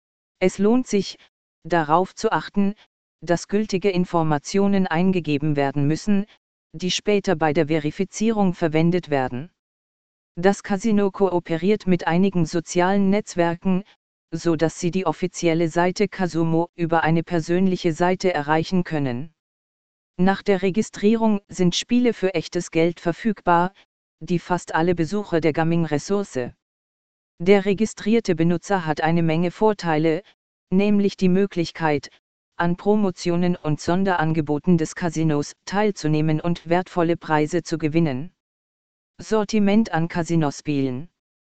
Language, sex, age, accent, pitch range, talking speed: German, female, 40-59, German, 165-195 Hz, 115 wpm